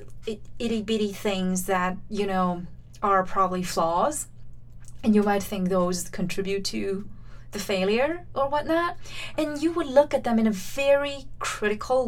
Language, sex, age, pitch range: English, female, 30-49, 185-235 Hz